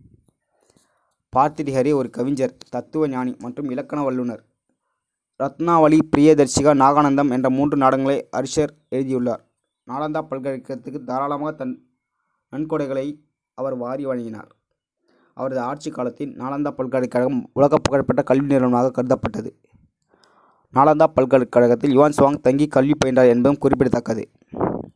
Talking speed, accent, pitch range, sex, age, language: 105 wpm, native, 125-145 Hz, male, 20-39, Tamil